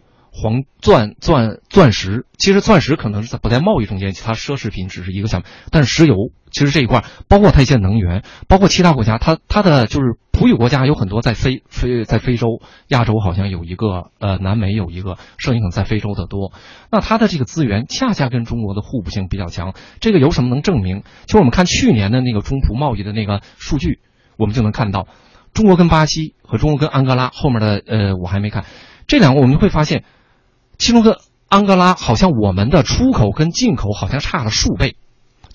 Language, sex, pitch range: Chinese, male, 100-140 Hz